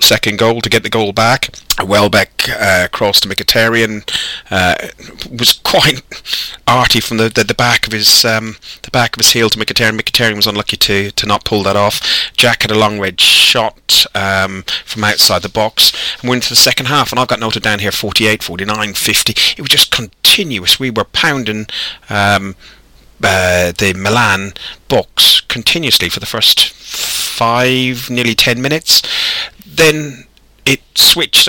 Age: 30-49